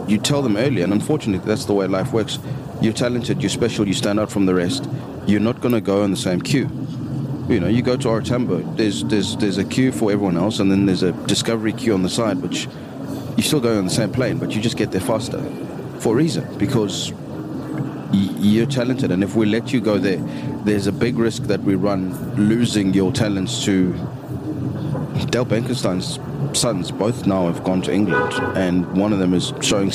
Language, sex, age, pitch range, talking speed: English, male, 30-49, 95-115 Hz, 215 wpm